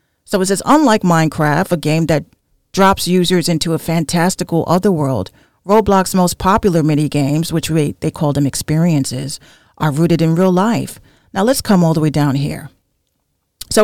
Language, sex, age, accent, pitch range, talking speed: English, female, 40-59, American, 150-190 Hz, 175 wpm